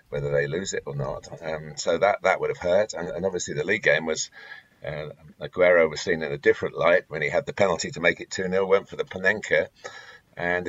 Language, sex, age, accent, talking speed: English, male, 50-69, British, 235 wpm